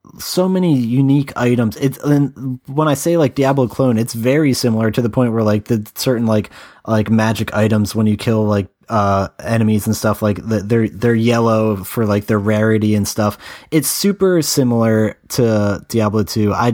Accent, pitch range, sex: American, 105-125 Hz, male